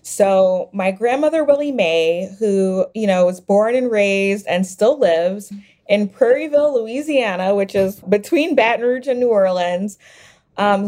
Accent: American